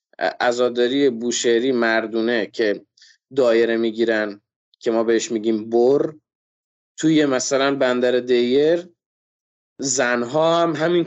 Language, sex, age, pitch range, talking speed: Persian, male, 20-39, 125-170 Hz, 100 wpm